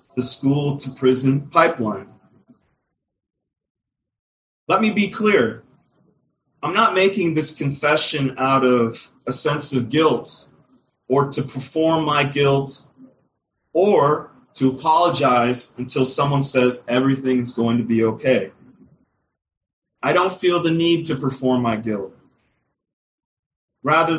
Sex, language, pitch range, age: male, English, 130-165 Hz, 30-49